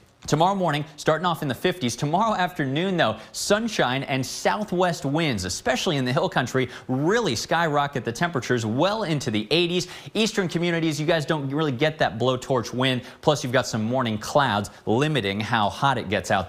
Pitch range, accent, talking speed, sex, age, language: 115-165 Hz, American, 180 wpm, male, 30-49, English